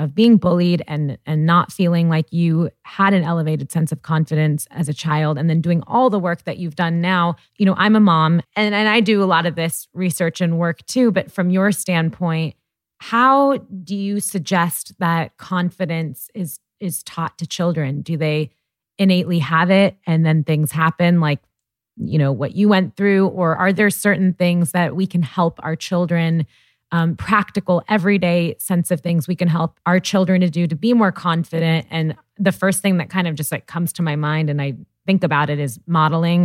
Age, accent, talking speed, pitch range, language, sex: 20-39, American, 205 wpm, 155-185 Hz, English, female